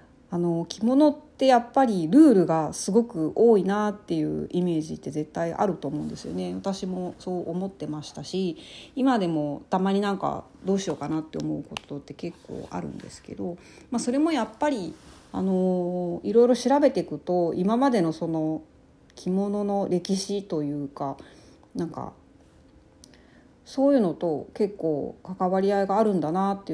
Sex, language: female, Japanese